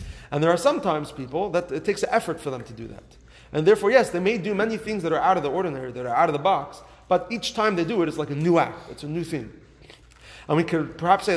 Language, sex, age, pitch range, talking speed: English, male, 30-49, 150-190 Hz, 290 wpm